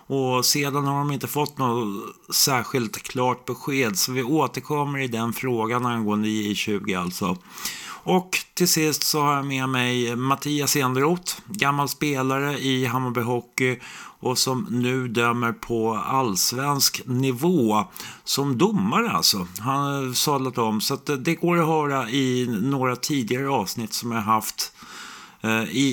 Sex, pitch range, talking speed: male, 110-140 Hz, 145 wpm